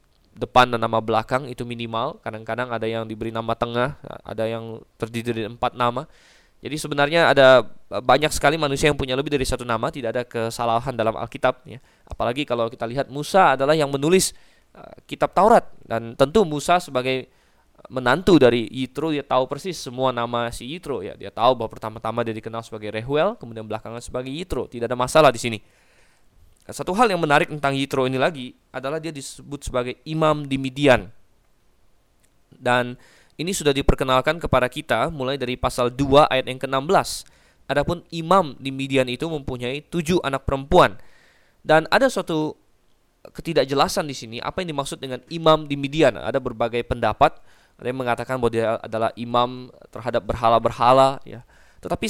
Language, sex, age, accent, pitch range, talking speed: Indonesian, male, 20-39, native, 115-145 Hz, 165 wpm